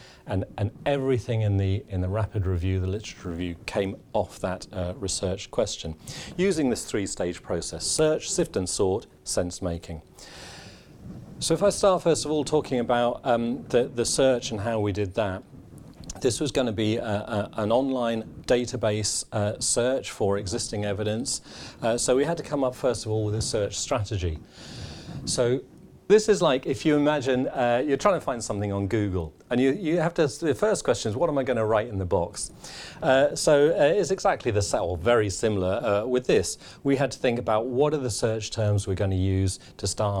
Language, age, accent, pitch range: English, 40-59, British, 95-125 Hz